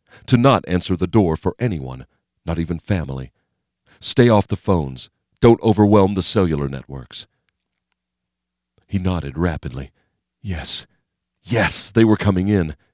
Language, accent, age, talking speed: English, American, 40-59, 130 wpm